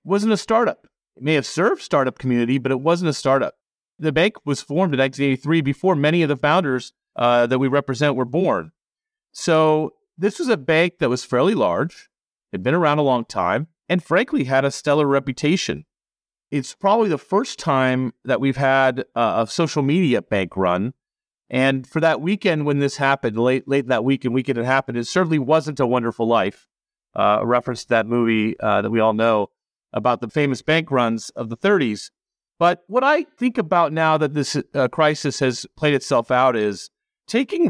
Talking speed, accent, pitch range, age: 195 wpm, American, 125-165 Hz, 40-59